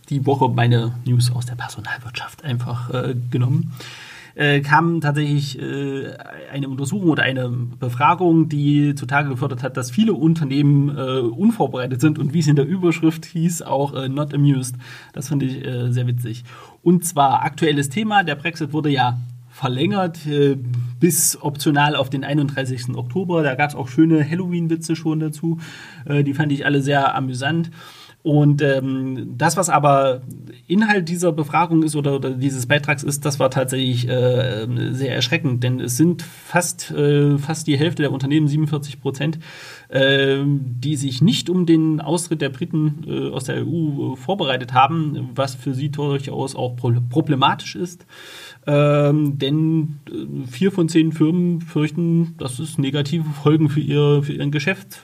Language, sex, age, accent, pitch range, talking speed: German, male, 30-49, German, 130-160 Hz, 160 wpm